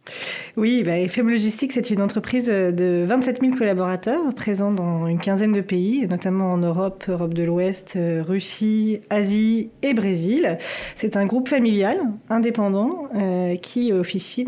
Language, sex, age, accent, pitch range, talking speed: French, female, 30-49, French, 175-225 Hz, 140 wpm